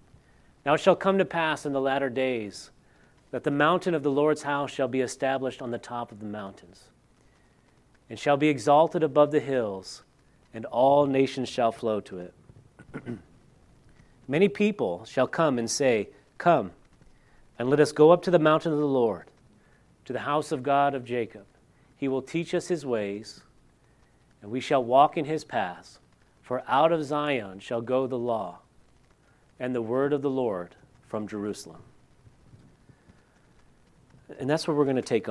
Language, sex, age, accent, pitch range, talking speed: English, male, 40-59, American, 130-155 Hz, 170 wpm